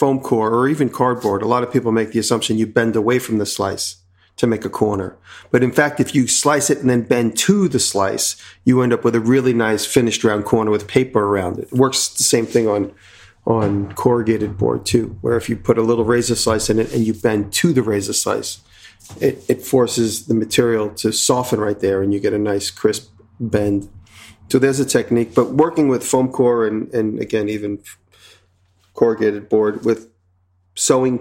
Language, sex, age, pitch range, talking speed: English, male, 40-59, 105-125 Hz, 210 wpm